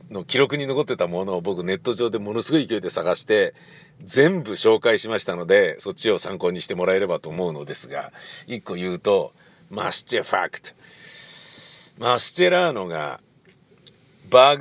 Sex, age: male, 50-69